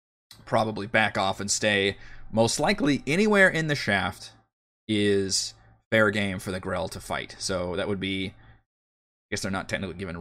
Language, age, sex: English, 20-39, male